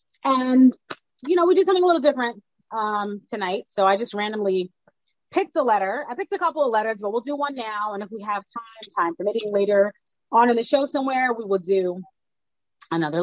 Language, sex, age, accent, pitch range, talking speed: English, female, 30-49, American, 195-260 Hz, 210 wpm